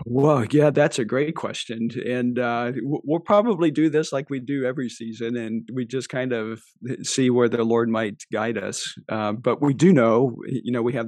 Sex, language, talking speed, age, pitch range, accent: male, English, 205 wpm, 50-69, 115-130 Hz, American